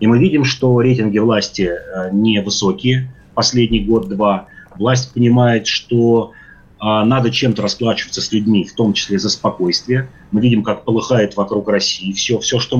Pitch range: 105-130 Hz